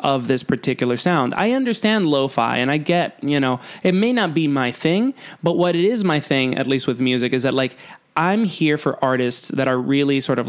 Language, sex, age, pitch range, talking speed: English, male, 20-39, 130-180 Hz, 230 wpm